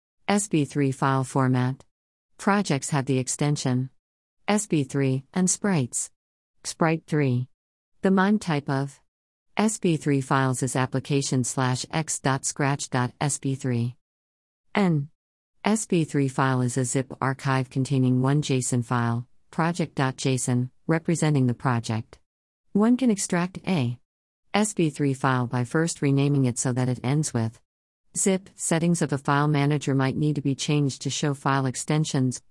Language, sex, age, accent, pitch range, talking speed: English, female, 50-69, American, 125-160 Hz, 120 wpm